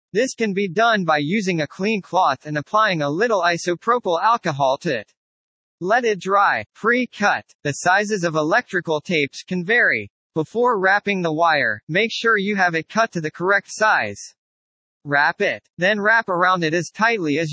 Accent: American